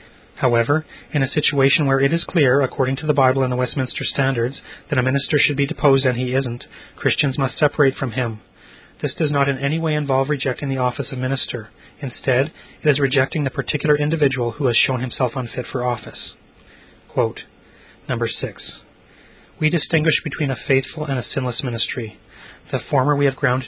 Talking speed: 185 wpm